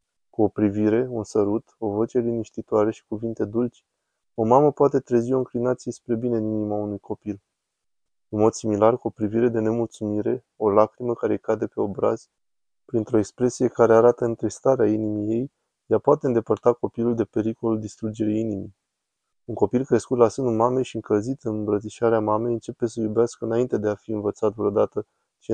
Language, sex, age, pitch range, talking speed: Romanian, male, 20-39, 105-115 Hz, 175 wpm